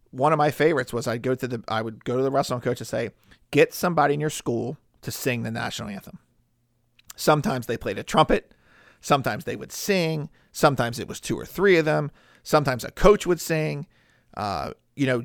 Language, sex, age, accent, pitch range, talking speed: English, male, 50-69, American, 115-145 Hz, 210 wpm